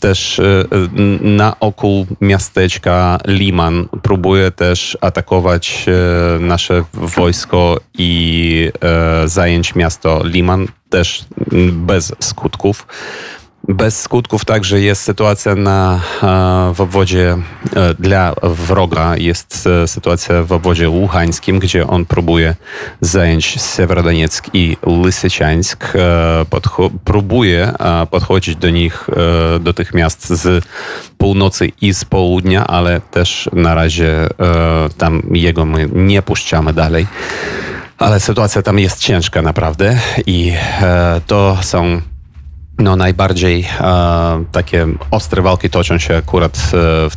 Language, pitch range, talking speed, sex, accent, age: Polish, 85-100 Hz, 95 wpm, male, native, 30-49